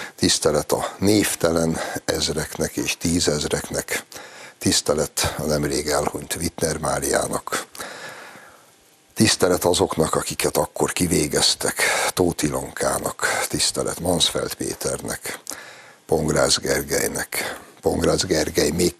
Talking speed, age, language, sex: 85 wpm, 60-79, Hungarian, male